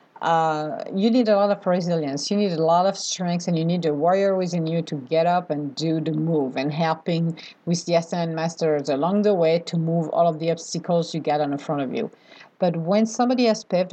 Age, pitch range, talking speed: 50-69, 165-215 Hz, 230 wpm